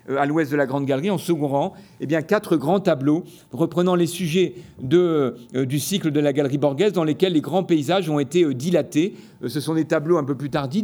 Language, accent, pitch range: French, French, 140-170 Hz